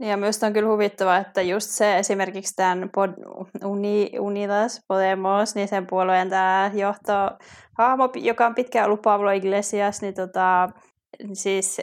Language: Finnish